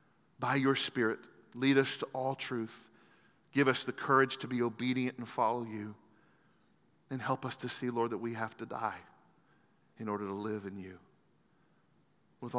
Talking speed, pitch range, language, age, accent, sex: 170 wpm, 110-140 Hz, English, 40-59, American, male